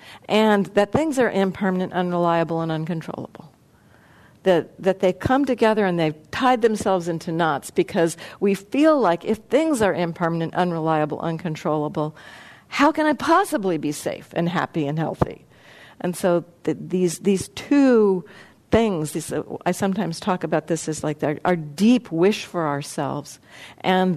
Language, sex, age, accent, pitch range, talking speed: English, female, 50-69, American, 165-215 Hz, 155 wpm